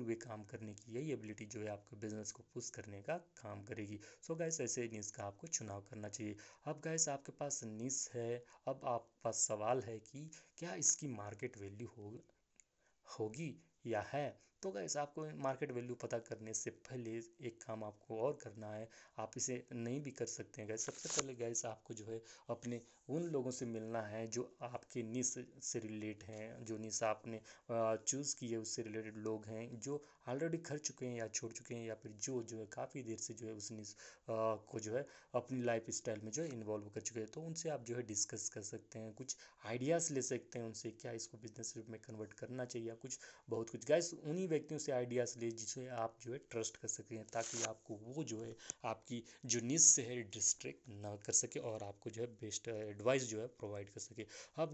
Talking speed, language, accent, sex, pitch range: 215 wpm, Hindi, native, male, 110-130 Hz